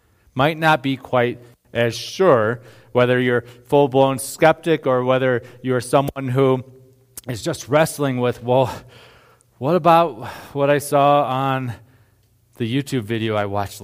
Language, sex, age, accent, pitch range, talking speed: English, male, 30-49, American, 115-135 Hz, 140 wpm